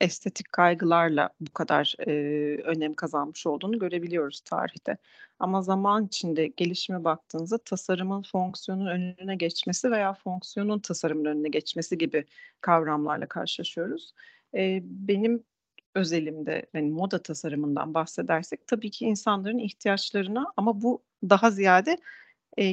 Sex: female